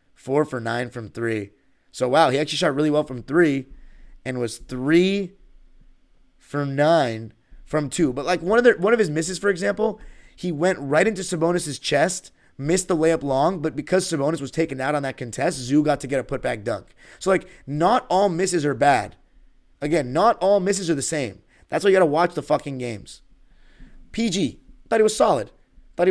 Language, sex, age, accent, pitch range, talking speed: English, male, 30-49, American, 125-175 Hz, 200 wpm